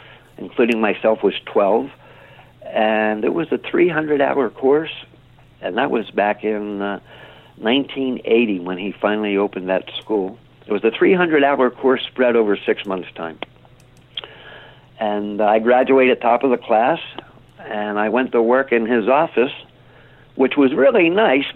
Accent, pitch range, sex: American, 110-140 Hz, male